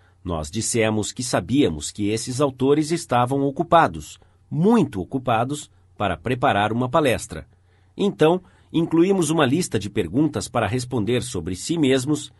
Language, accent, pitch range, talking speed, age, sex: Portuguese, Brazilian, 95-145 Hz, 125 wpm, 50-69, male